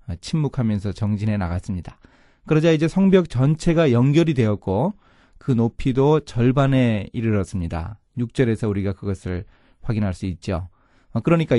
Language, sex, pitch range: Korean, male, 100-140 Hz